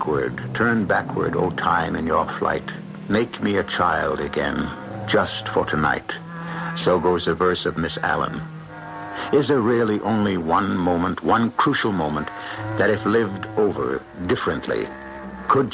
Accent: American